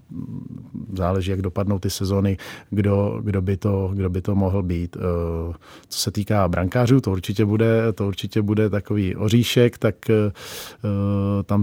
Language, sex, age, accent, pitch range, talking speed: Czech, male, 40-59, native, 95-105 Hz, 135 wpm